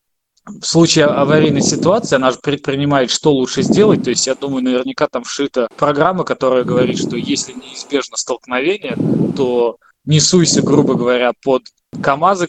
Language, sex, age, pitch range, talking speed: Russian, male, 20-39, 130-160 Hz, 145 wpm